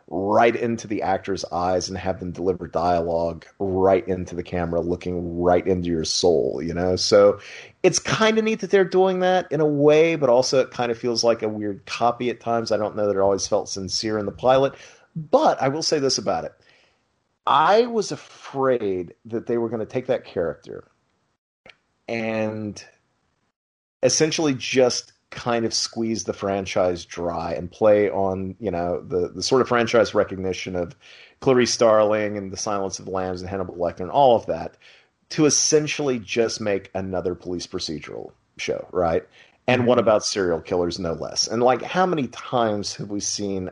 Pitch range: 95-130 Hz